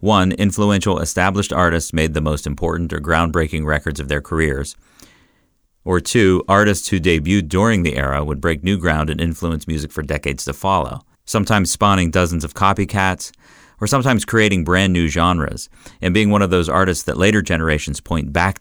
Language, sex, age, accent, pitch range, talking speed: English, male, 40-59, American, 80-100 Hz, 175 wpm